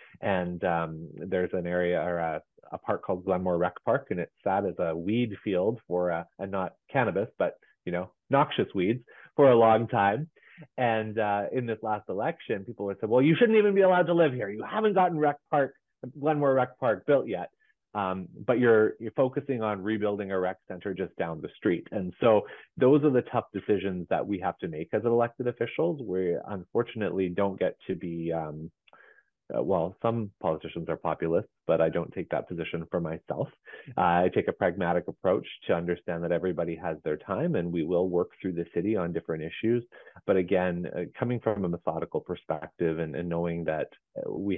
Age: 30-49